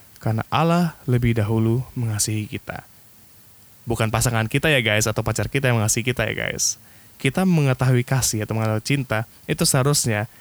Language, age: Indonesian, 20-39